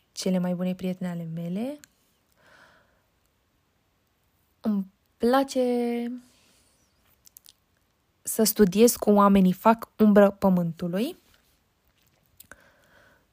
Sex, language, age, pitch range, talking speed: female, Romanian, 20-39, 185-230 Hz, 70 wpm